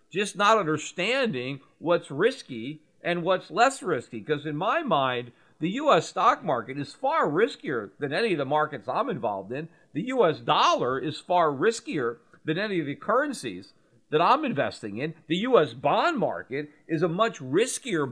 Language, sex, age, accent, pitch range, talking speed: English, male, 50-69, American, 150-195 Hz, 170 wpm